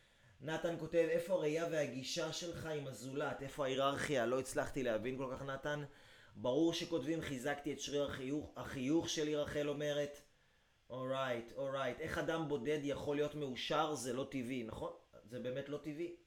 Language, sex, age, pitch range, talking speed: Hebrew, male, 30-49, 130-160 Hz, 160 wpm